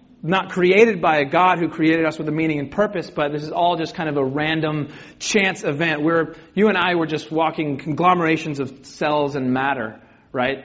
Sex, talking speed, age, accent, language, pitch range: male, 210 wpm, 30-49, American, English, 135-185 Hz